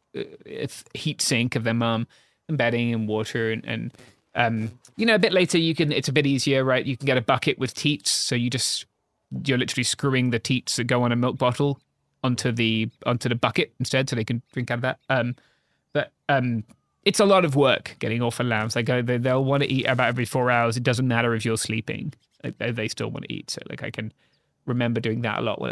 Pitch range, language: 115-140 Hz, English